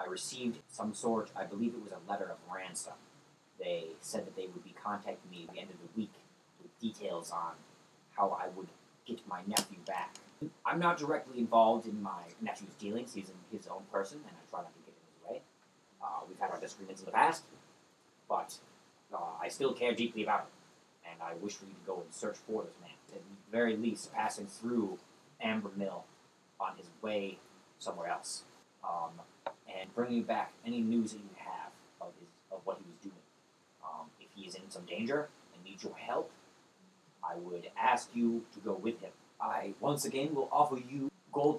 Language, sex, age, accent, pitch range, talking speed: English, male, 30-49, American, 105-145 Hz, 205 wpm